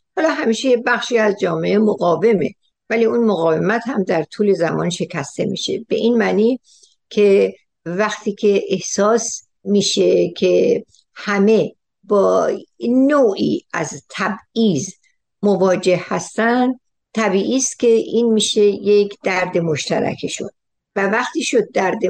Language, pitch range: Persian, 175-230 Hz